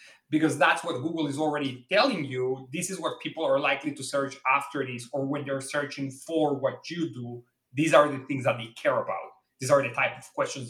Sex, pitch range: male, 135-160 Hz